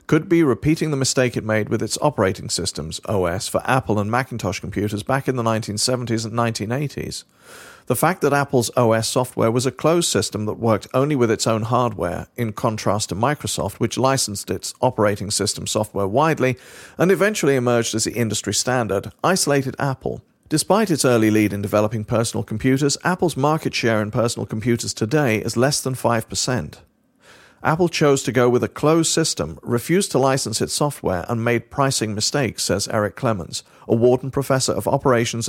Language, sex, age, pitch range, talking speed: English, male, 40-59, 110-135 Hz, 175 wpm